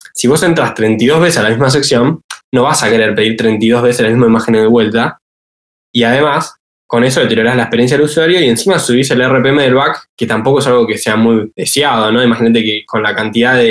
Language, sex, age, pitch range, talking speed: Spanish, male, 10-29, 115-150 Hz, 225 wpm